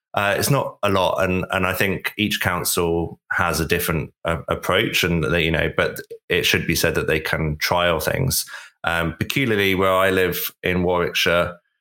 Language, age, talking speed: English, 20-39, 190 wpm